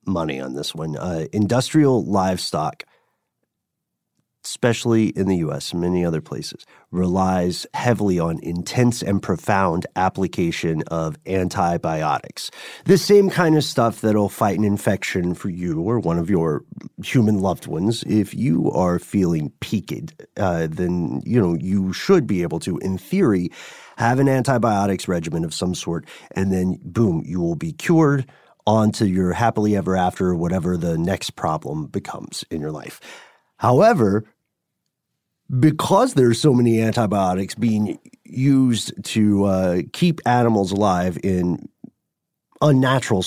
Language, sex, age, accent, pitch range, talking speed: English, male, 30-49, American, 90-120 Hz, 140 wpm